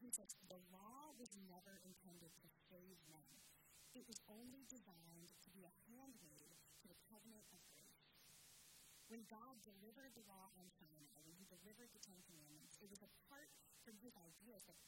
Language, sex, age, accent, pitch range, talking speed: English, female, 40-59, American, 180-235 Hz, 180 wpm